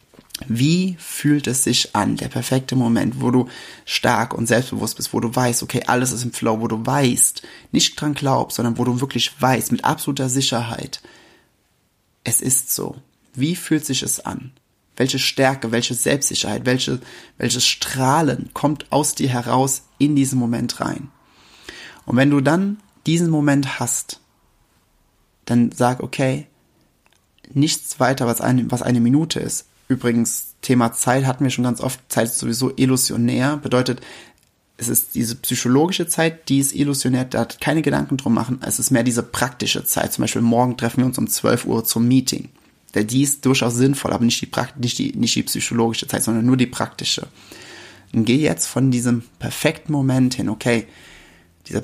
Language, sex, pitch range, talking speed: German, male, 120-135 Hz, 170 wpm